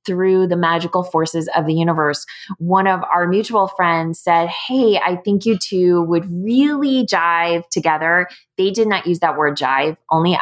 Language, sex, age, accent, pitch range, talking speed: English, female, 20-39, American, 165-195 Hz, 175 wpm